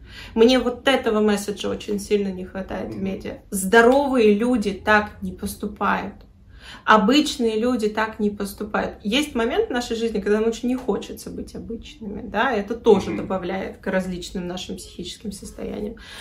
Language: Russian